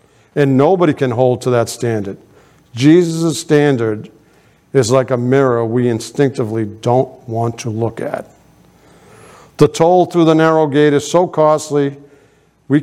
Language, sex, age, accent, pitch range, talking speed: English, male, 50-69, American, 120-145 Hz, 140 wpm